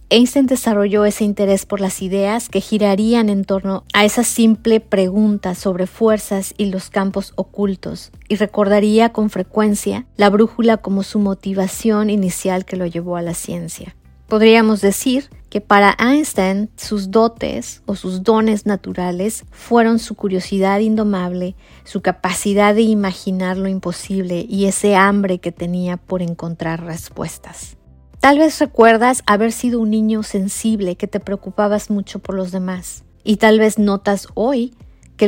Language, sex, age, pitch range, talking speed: Spanish, female, 30-49, 195-225 Hz, 150 wpm